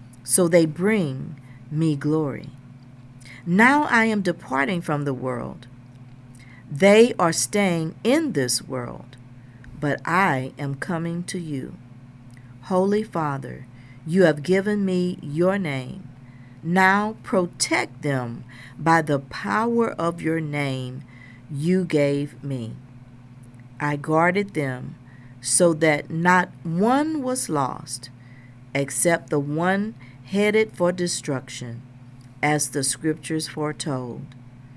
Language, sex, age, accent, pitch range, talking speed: English, female, 50-69, American, 125-180 Hz, 110 wpm